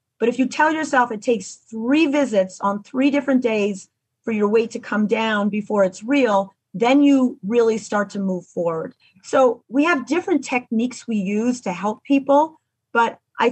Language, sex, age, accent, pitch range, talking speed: English, female, 40-59, American, 200-255 Hz, 180 wpm